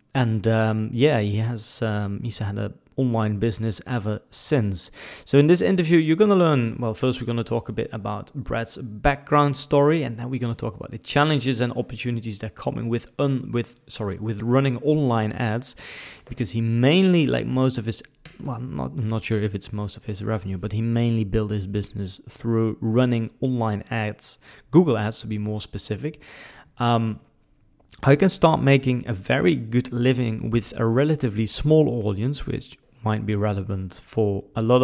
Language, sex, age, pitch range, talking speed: English, male, 20-39, 110-135 Hz, 190 wpm